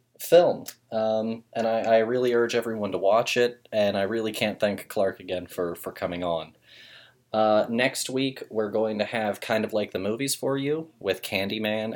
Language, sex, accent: English, male, American